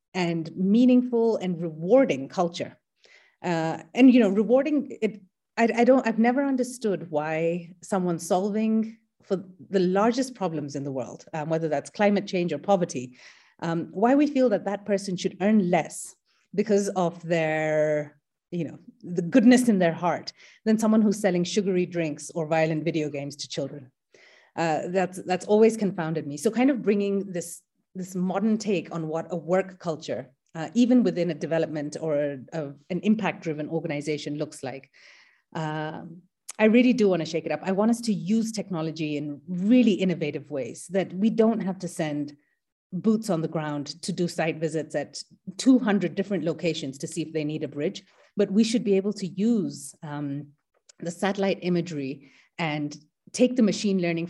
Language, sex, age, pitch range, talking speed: English, female, 30-49, 160-210 Hz, 170 wpm